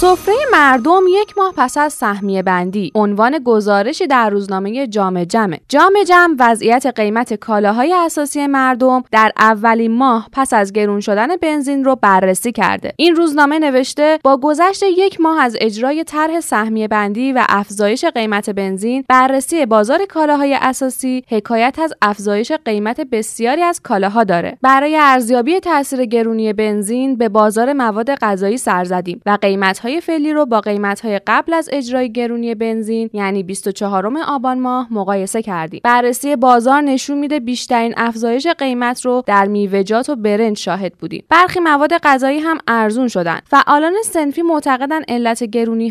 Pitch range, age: 215-290 Hz, 10-29